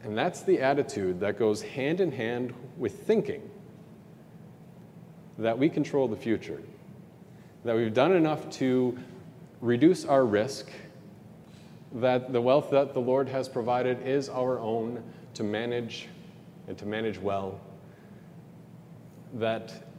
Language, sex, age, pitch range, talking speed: English, male, 30-49, 110-155 Hz, 125 wpm